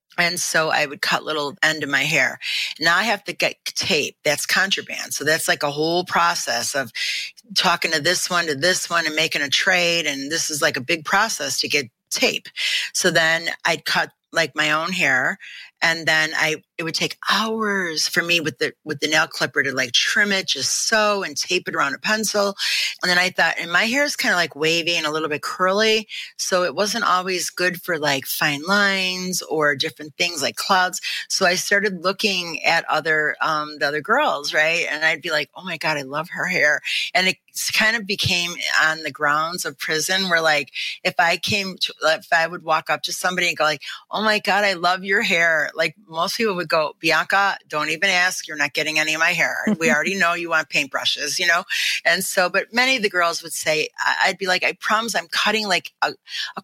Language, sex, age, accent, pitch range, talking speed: English, female, 30-49, American, 155-195 Hz, 225 wpm